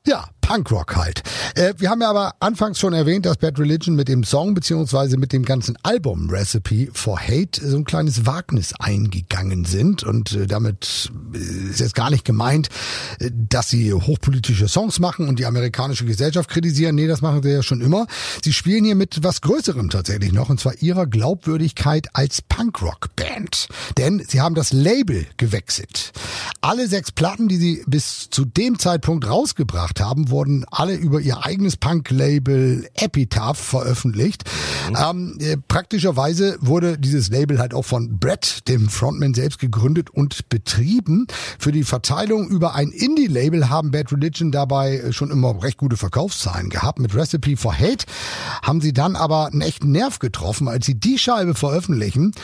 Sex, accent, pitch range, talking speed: male, German, 120-165 Hz, 160 wpm